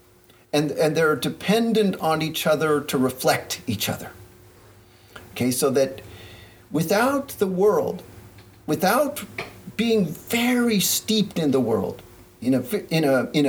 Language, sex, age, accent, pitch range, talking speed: English, male, 40-59, American, 140-215 Hz, 135 wpm